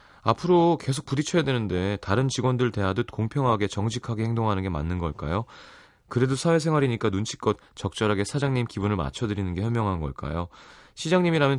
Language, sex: Korean, male